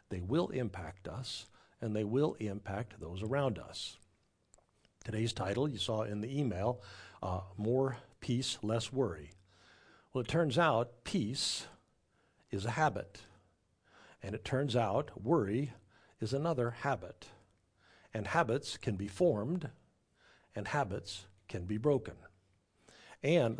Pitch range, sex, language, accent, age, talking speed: 100-140 Hz, male, English, American, 60-79, 125 wpm